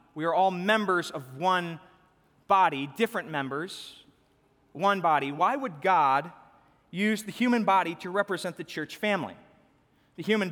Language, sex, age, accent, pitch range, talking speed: English, male, 30-49, American, 140-185 Hz, 145 wpm